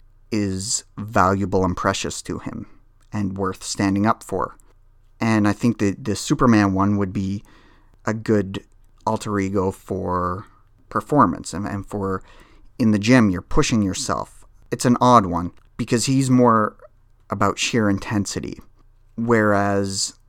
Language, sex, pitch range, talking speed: English, male, 100-115 Hz, 135 wpm